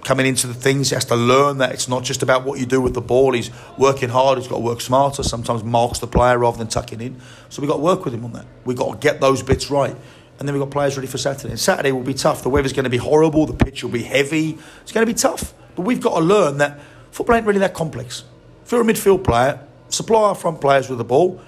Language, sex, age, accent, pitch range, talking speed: English, male, 40-59, British, 125-155 Hz, 290 wpm